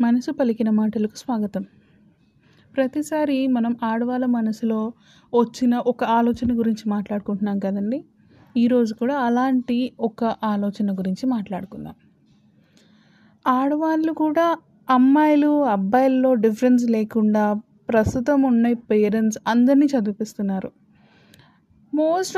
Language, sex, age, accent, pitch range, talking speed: Telugu, female, 30-49, native, 220-290 Hz, 90 wpm